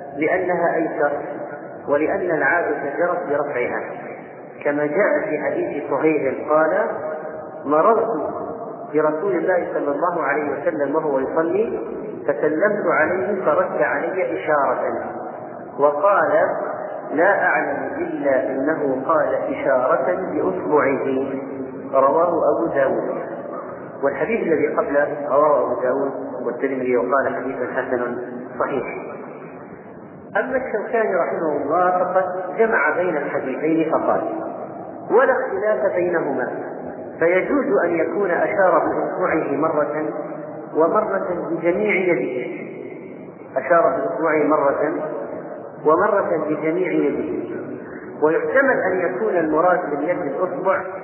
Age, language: 40-59, Arabic